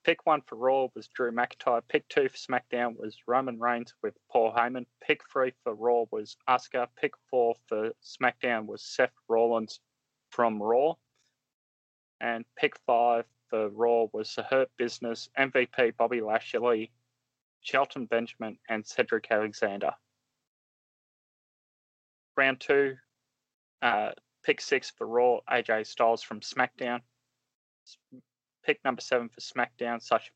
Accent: Australian